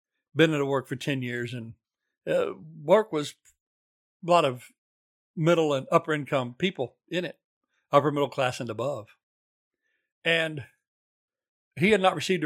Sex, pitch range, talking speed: male, 125-170 Hz, 150 wpm